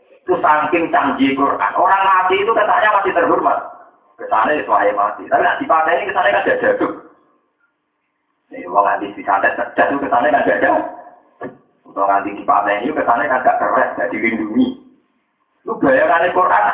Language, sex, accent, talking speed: Indonesian, male, native, 160 wpm